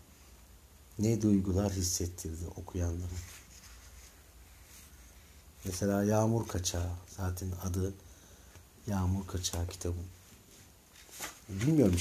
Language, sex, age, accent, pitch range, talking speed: Turkish, male, 60-79, native, 90-105 Hz, 65 wpm